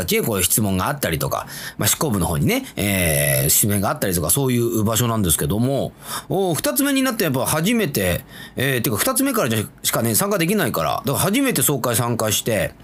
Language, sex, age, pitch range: Japanese, male, 30-49, 110-180 Hz